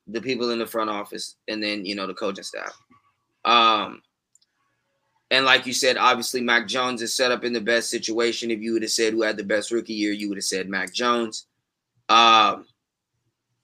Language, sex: English, male